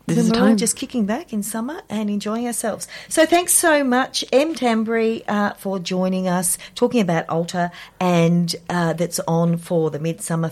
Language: English